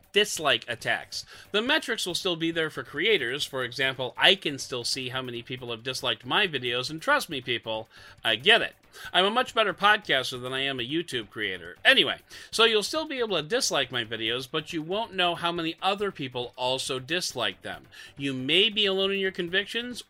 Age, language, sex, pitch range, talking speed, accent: 40-59, English, male, 135-215 Hz, 205 wpm, American